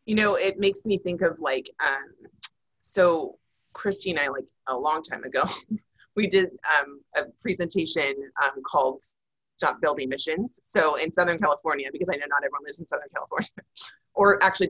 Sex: female